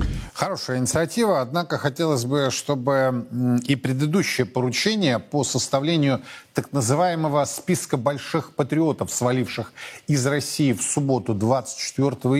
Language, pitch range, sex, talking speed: Russian, 115-165 Hz, male, 105 wpm